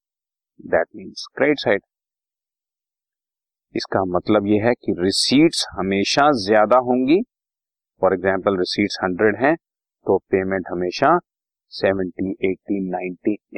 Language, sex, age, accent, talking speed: Hindi, male, 30-49, native, 95 wpm